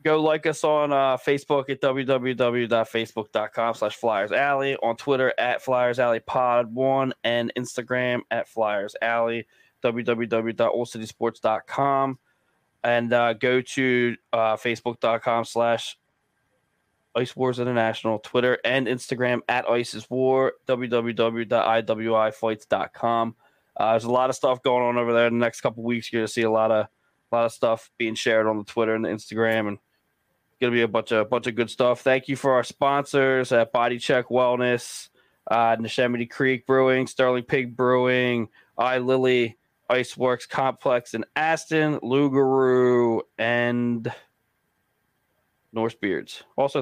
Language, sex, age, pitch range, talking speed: English, male, 20-39, 115-130 Hz, 145 wpm